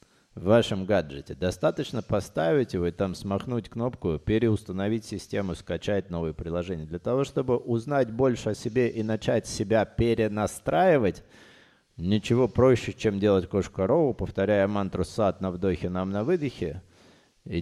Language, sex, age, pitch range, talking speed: Russian, male, 30-49, 90-115 Hz, 135 wpm